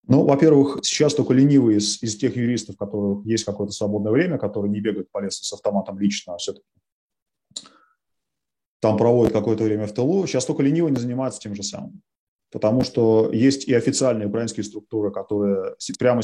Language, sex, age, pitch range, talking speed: Russian, male, 30-49, 105-140 Hz, 175 wpm